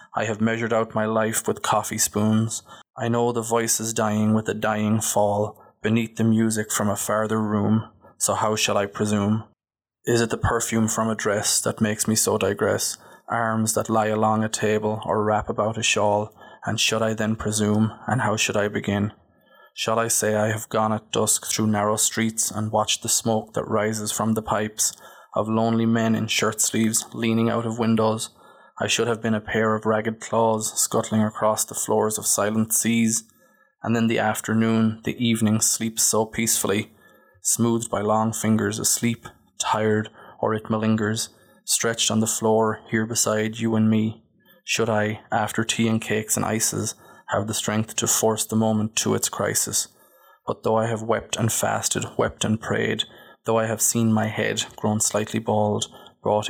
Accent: Irish